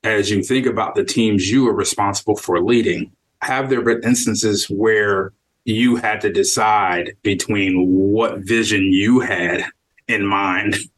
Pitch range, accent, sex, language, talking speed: 105-130 Hz, American, male, English, 150 wpm